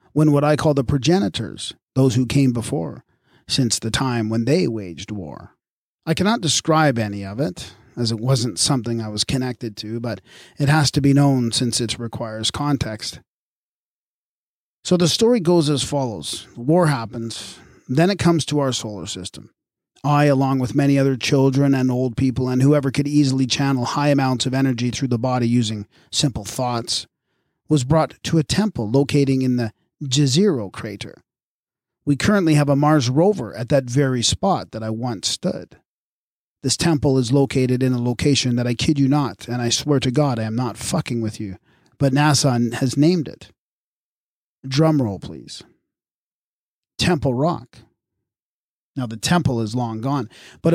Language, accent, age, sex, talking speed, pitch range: English, American, 40-59, male, 170 wpm, 115-145 Hz